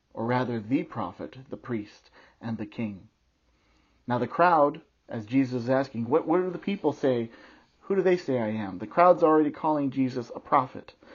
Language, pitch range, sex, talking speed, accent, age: English, 115-155 Hz, male, 190 wpm, American, 40-59